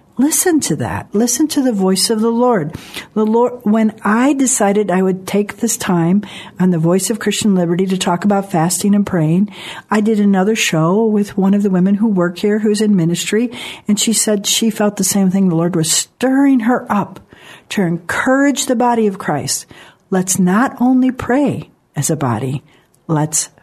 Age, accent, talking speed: 60-79, American, 190 wpm